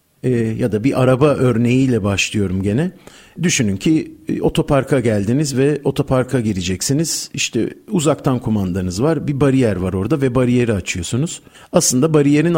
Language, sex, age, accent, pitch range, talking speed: Turkish, male, 50-69, native, 115-150 Hz, 130 wpm